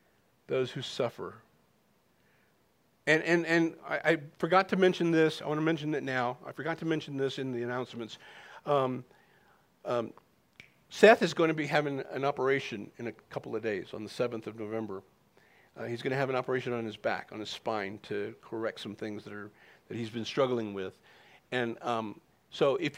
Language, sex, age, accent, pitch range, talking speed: English, male, 50-69, American, 120-150 Hz, 195 wpm